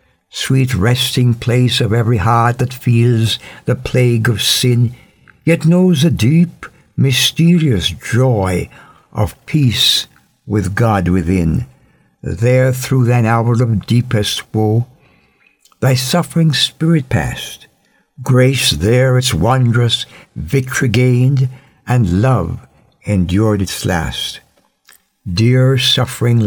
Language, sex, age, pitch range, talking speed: English, male, 60-79, 115-135 Hz, 105 wpm